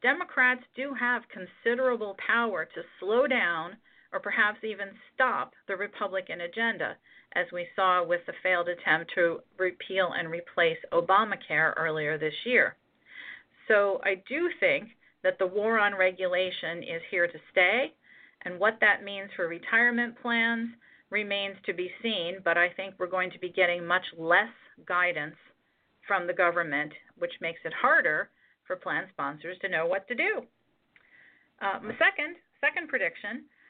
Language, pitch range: English, 175-230 Hz